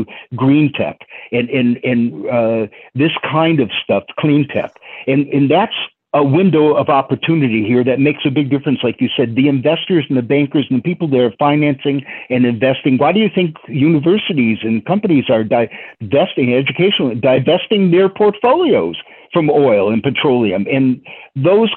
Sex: male